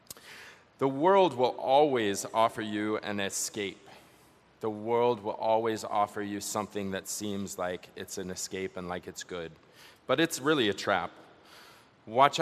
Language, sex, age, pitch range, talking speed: English, male, 30-49, 95-125 Hz, 150 wpm